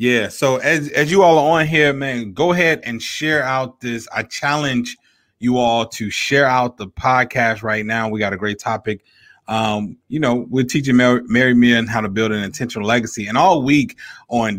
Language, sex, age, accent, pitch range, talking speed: English, male, 30-49, American, 110-140 Hz, 205 wpm